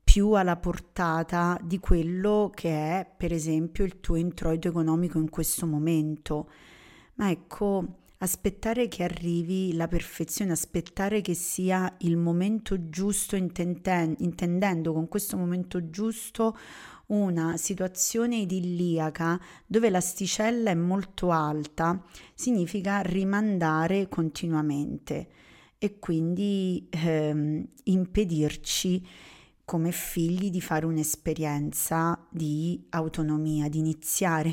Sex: female